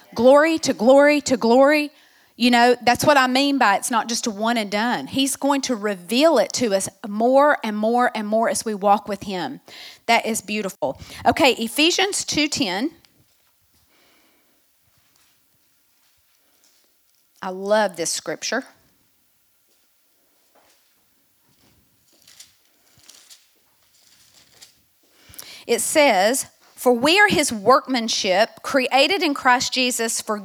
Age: 40-59